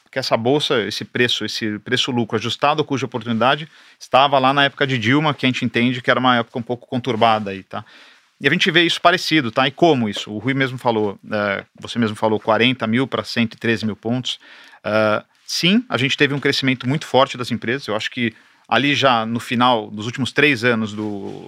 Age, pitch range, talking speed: 40-59, 110-140 Hz, 210 wpm